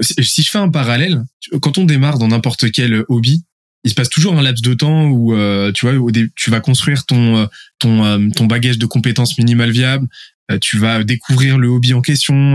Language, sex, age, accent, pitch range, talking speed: French, male, 20-39, French, 110-135 Hz, 190 wpm